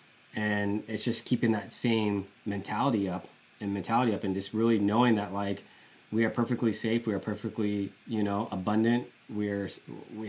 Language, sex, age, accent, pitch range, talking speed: English, male, 20-39, American, 100-115 Hz, 170 wpm